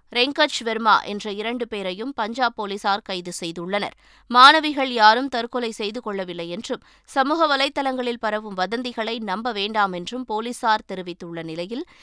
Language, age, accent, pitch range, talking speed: Tamil, 20-39, native, 210-275 Hz, 120 wpm